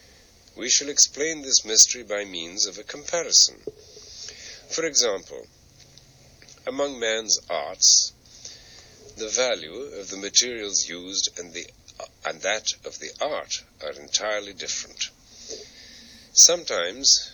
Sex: male